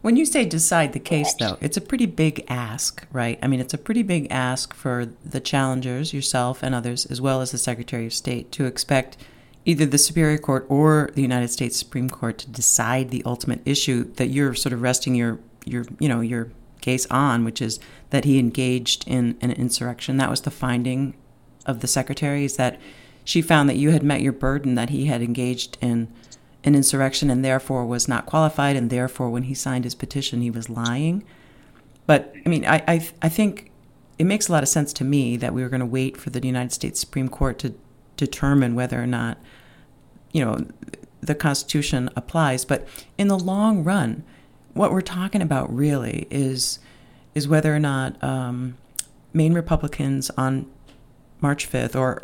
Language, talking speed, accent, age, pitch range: English, 195 wpm, American, 40-59, 125-145 Hz